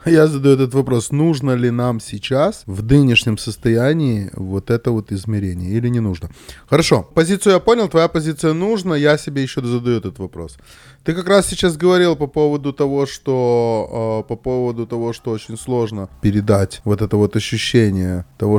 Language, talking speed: Russian, 170 wpm